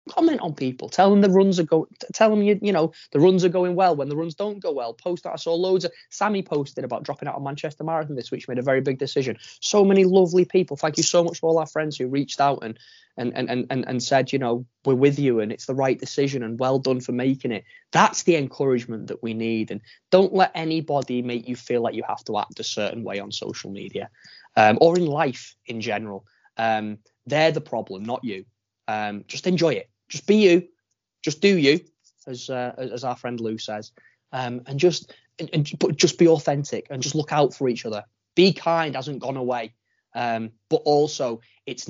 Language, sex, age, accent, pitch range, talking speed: English, male, 20-39, British, 115-160 Hz, 230 wpm